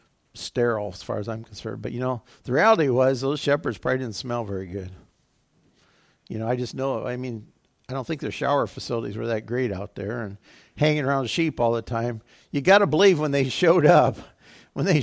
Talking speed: 215 wpm